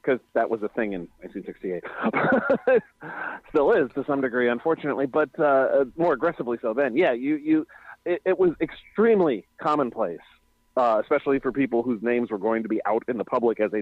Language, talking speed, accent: English, 185 wpm, American